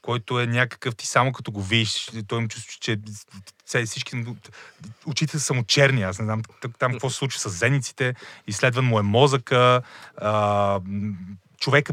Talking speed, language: 150 wpm, Bulgarian